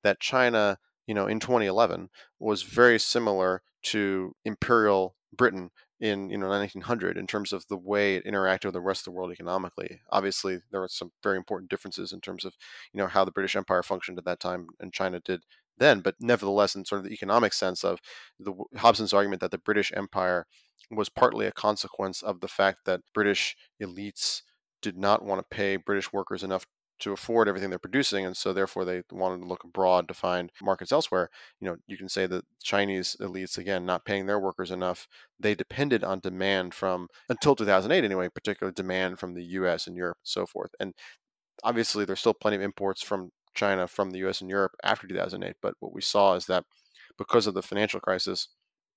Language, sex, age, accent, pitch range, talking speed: English, male, 30-49, American, 95-105 Hz, 200 wpm